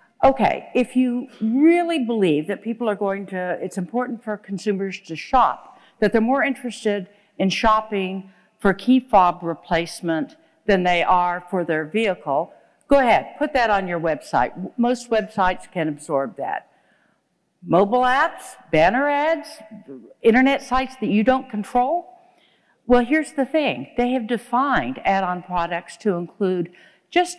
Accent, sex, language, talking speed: American, female, English, 145 wpm